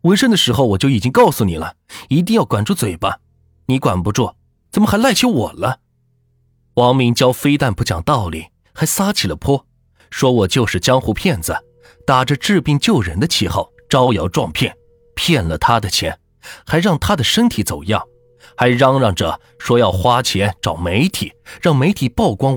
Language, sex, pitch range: Chinese, male, 100-135 Hz